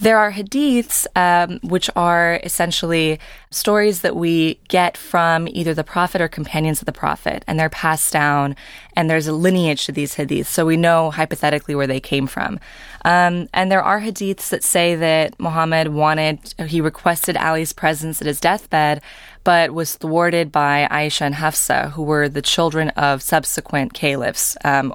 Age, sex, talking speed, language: 20-39, female, 170 wpm, English